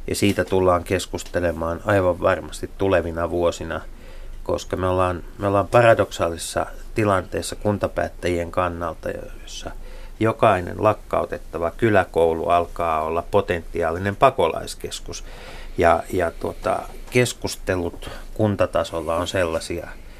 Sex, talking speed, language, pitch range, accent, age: male, 95 wpm, Finnish, 85-100 Hz, native, 30-49